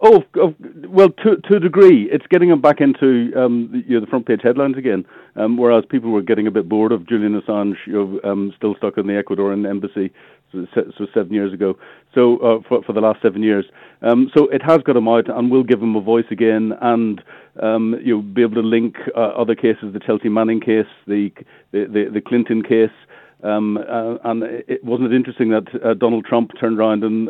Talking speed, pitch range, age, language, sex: 220 wpm, 110-125 Hz, 50-69, English, male